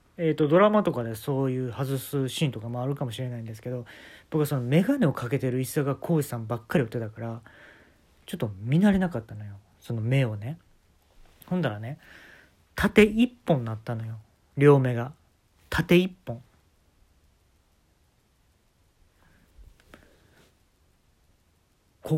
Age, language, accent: 40-59, Japanese, native